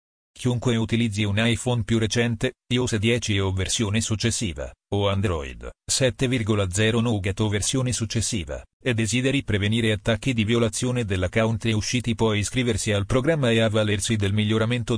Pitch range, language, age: 105-120 Hz, Italian, 40-59